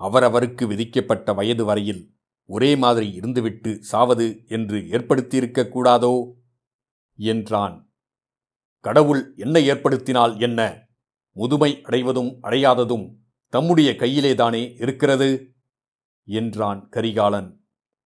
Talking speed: 80 wpm